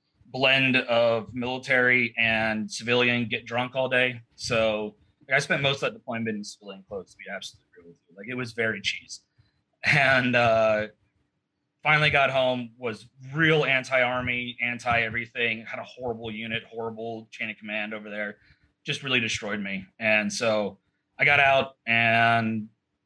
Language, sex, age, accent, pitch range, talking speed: English, male, 30-49, American, 110-130 Hz, 155 wpm